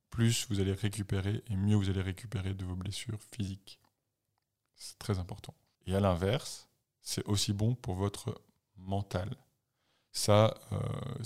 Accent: French